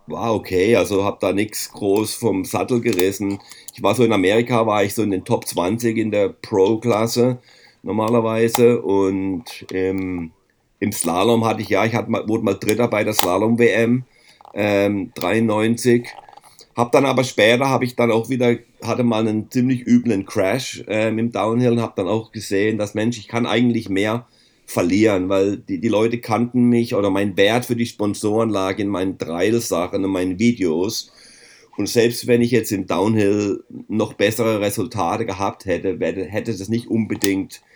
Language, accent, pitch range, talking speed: German, German, 100-120 Hz, 170 wpm